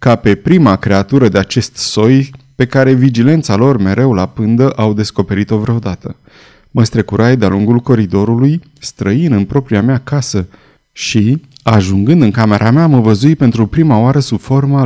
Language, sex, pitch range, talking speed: Romanian, male, 105-145 Hz, 160 wpm